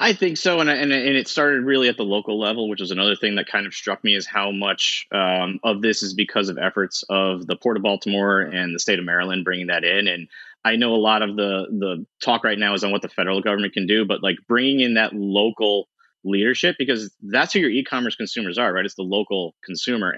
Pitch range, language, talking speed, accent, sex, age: 95-120 Hz, English, 245 wpm, American, male, 30-49